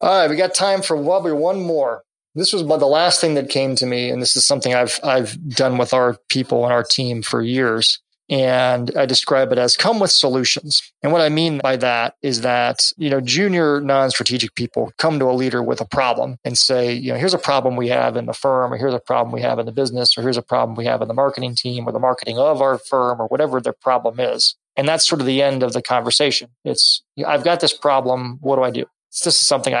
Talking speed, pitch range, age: 255 wpm, 125-140 Hz, 20-39